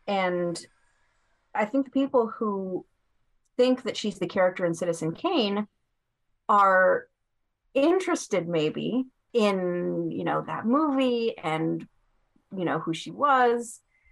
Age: 30-49